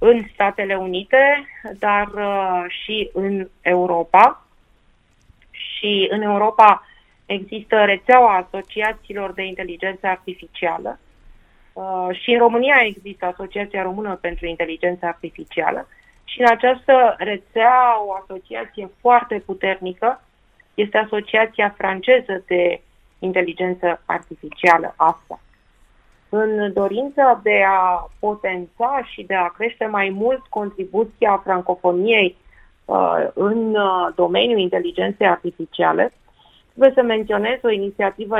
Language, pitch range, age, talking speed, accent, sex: Romanian, 180-220 Hz, 30-49, 100 wpm, native, female